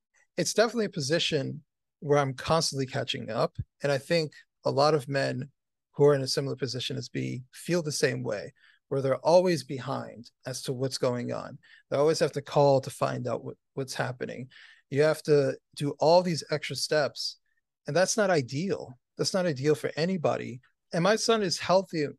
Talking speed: 185 wpm